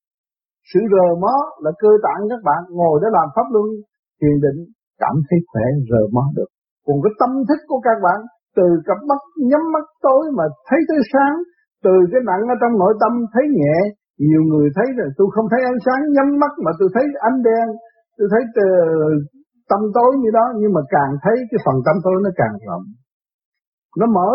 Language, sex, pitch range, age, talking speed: Vietnamese, male, 165-255 Hz, 60-79, 205 wpm